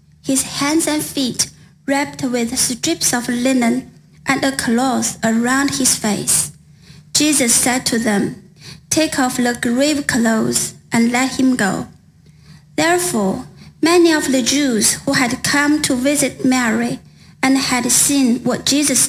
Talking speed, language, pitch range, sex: 140 wpm, English, 230-280 Hz, female